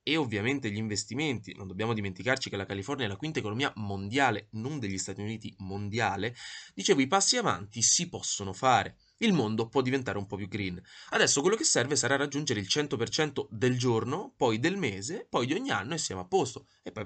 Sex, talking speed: male, 205 wpm